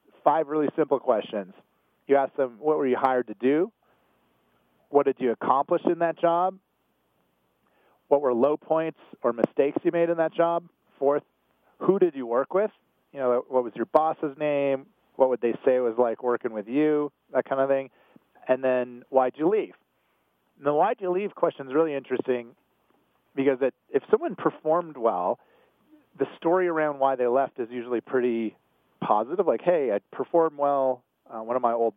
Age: 40-59